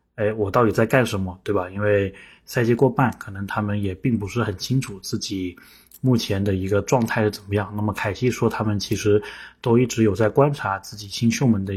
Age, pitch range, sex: 20-39, 105-120 Hz, male